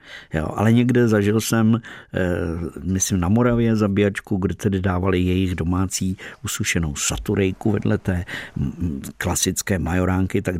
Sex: male